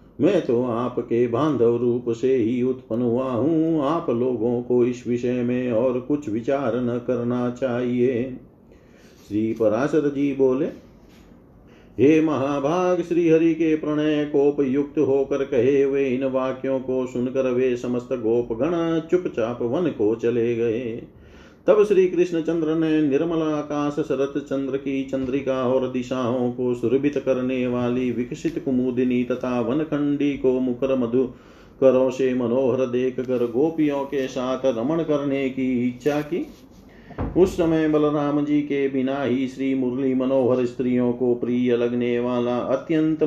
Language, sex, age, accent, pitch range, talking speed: Hindi, male, 50-69, native, 125-145 Hz, 135 wpm